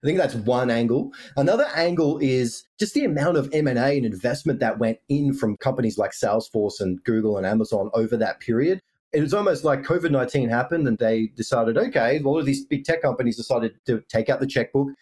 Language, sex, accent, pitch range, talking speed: English, male, Australian, 115-155 Hz, 205 wpm